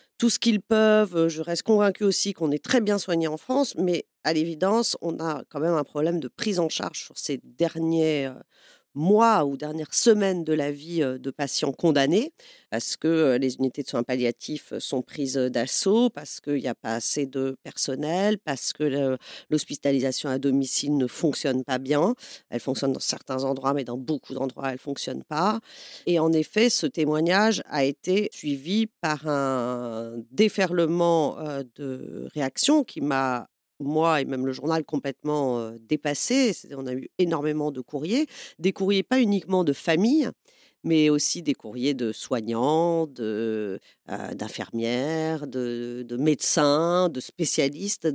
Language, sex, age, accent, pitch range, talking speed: French, female, 40-59, French, 135-185 Hz, 160 wpm